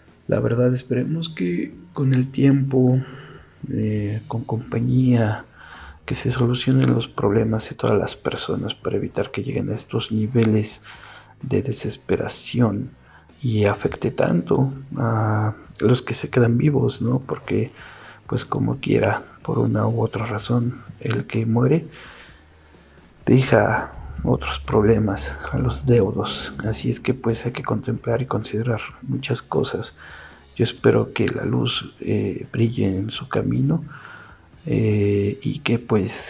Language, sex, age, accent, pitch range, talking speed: Spanish, male, 50-69, Mexican, 110-130 Hz, 135 wpm